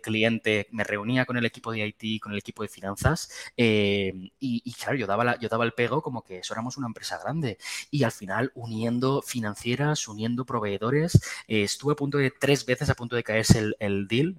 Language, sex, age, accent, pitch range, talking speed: Spanish, male, 20-39, Spanish, 105-125 Hz, 215 wpm